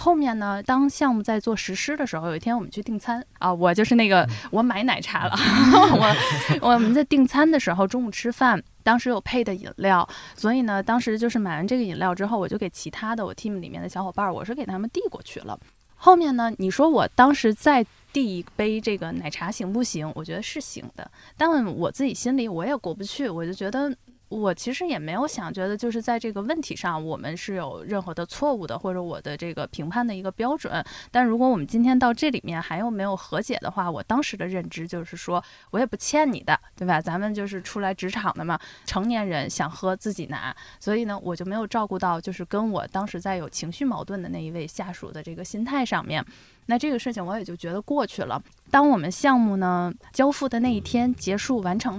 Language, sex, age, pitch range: Chinese, female, 10-29, 185-245 Hz